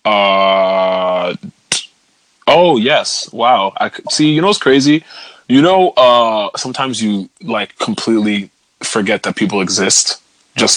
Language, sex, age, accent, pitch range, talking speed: English, male, 20-39, American, 100-115 Hz, 125 wpm